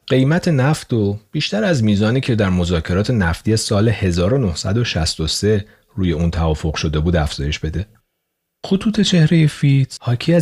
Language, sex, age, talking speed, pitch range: Persian, male, 40-59, 130 wpm, 85-120 Hz